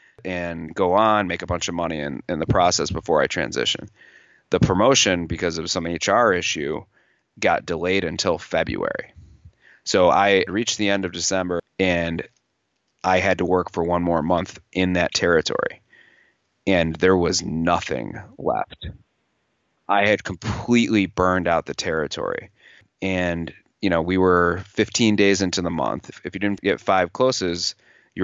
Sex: male